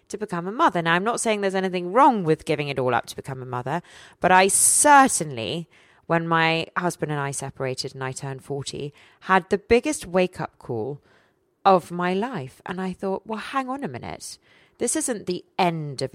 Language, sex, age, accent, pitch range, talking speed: English, female, 30-49, British, 160-215 Hz, 205 wpm